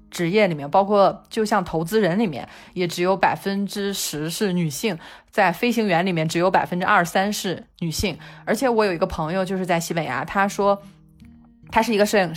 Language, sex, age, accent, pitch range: Chinese, female, 20-39, native, 170-215 Hz